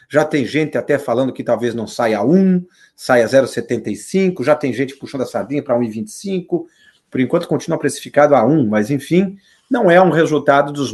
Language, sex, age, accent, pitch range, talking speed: Portuguese, male, 50-69, Brazilian, 135-190 Hz, 185 wpm